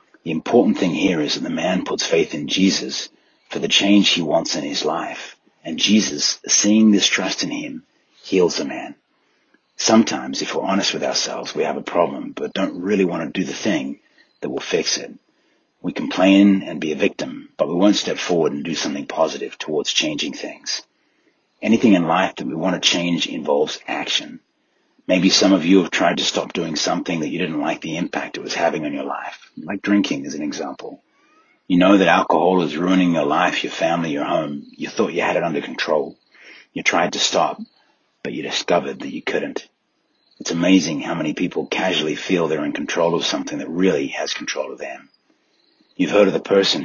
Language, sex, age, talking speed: English, male, 40-59, 205 wpm